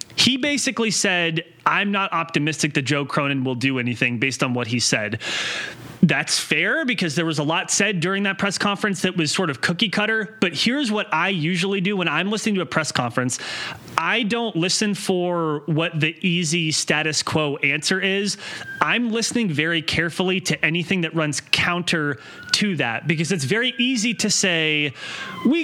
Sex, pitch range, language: male, 150-195 Hz, English